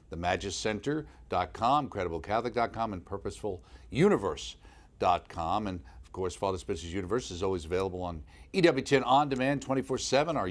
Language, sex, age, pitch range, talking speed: English, male, 50-69, 90-120 Hz, 110 wpm